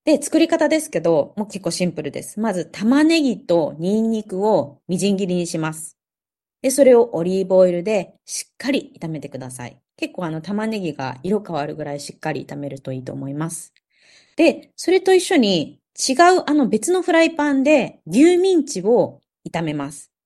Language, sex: Japanese, female